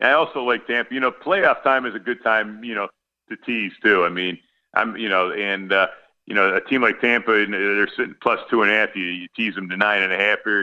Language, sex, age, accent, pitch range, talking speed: English, male, 40-59, American, 90-120 Hz, 265 wpm